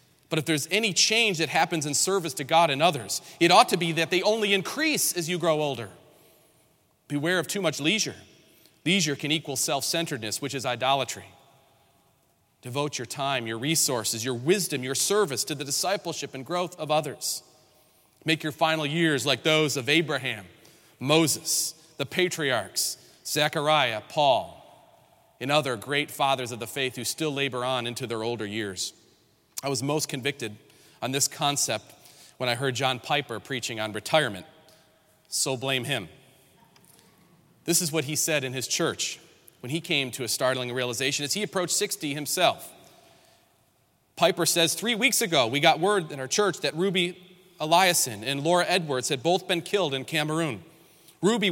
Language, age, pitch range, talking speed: English, 40-59, 135-165 Hz, 165 wpm